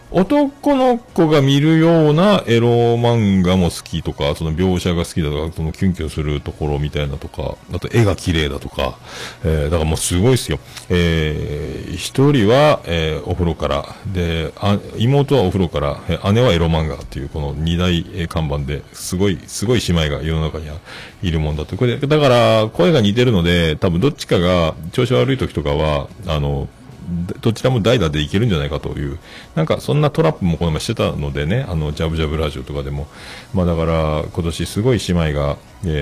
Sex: male